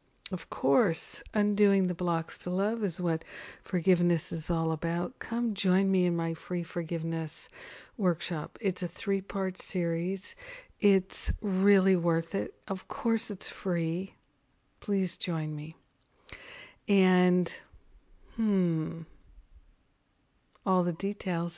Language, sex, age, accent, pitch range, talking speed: English, female, 50-69, American, 170-195 Hz, 115 wpm